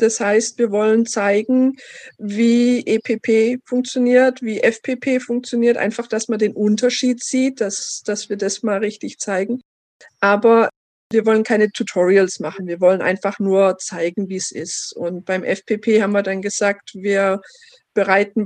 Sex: female